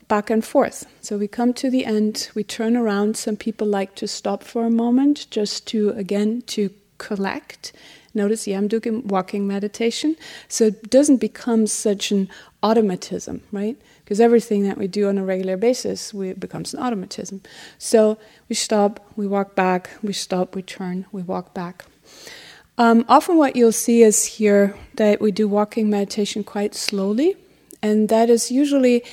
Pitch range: 205-240 Hz